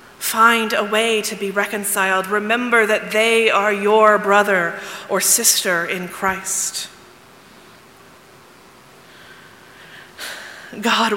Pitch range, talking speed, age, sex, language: 195-225 Hz, 90 wpm, 30-49, female, English